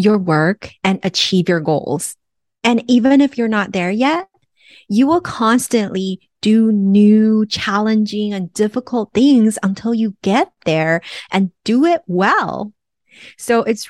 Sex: female